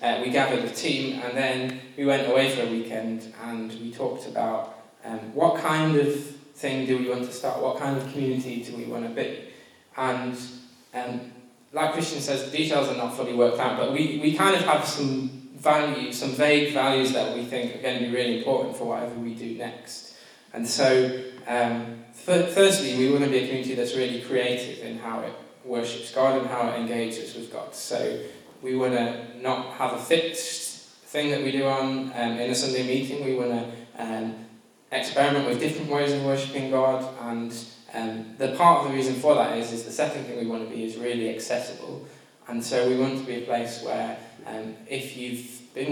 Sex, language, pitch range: male, English, 120-140 Hz